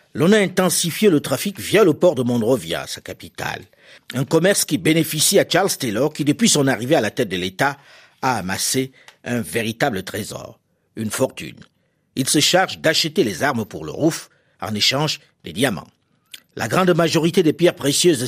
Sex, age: male, 50-69